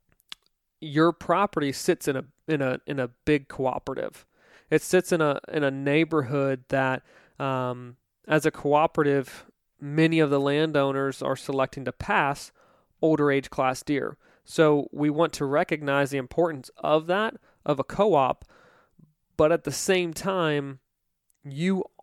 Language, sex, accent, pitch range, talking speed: English, male, American, 135-160 Hz, 145 wpm